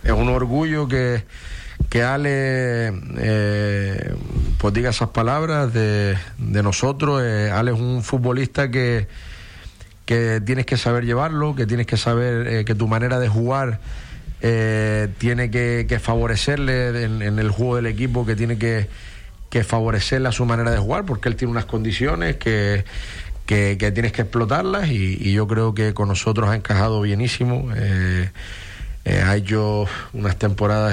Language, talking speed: Spanish, 160 wpm